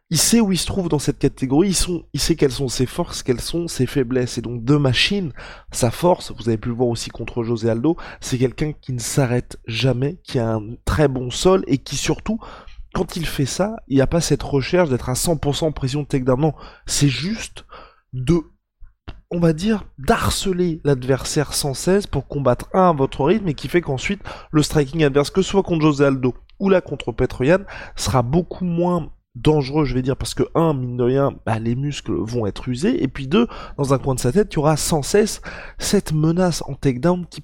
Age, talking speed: 20-39, 220 wpm